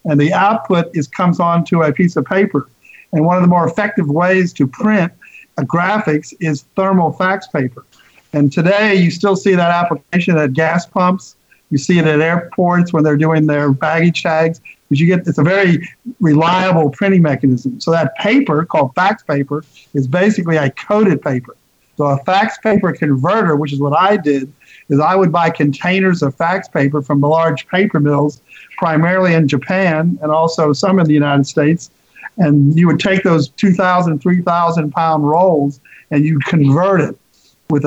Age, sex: 50-69, male